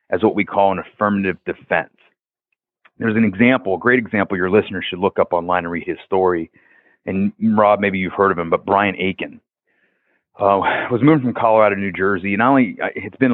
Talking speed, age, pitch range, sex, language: 205 wpm, 30-49, 95-125 Hz, male, English